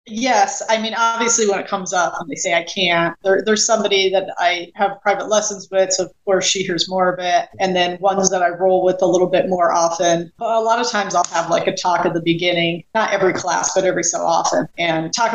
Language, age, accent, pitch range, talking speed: English, 30-49, American, 170-195 Hz, 245 wpm